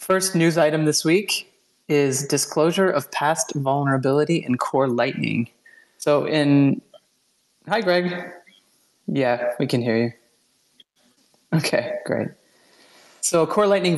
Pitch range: 125-165 Hz